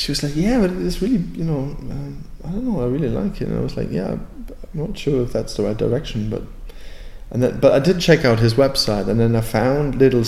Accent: German